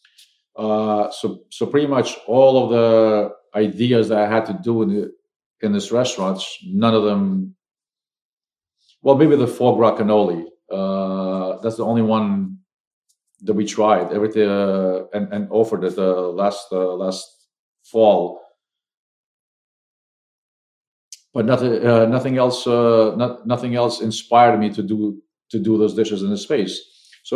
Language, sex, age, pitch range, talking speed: English, male, 50-69, 105-120 Hz, 145 wpm